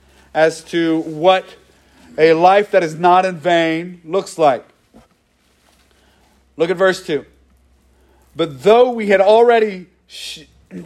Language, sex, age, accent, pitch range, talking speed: English, male, 40-59, American, 155-220 Hz, 120 wpm